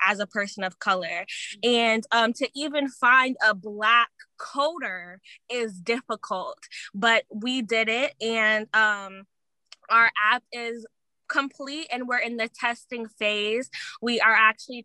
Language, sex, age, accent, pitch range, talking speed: English, female, 20-39, American, 210-240 Hz, 135 wpm